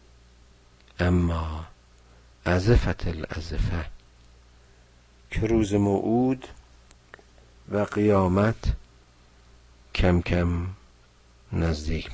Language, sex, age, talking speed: Persian, male, 50-69, 50 wpm